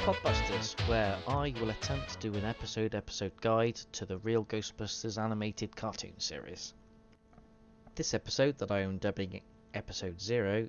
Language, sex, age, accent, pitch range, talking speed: English, male, 30-49, British, 105-120 Hz, 145 wpm